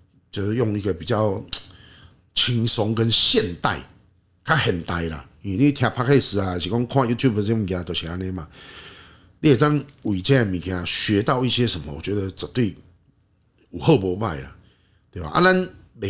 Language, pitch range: Chinese, 90-120 Hz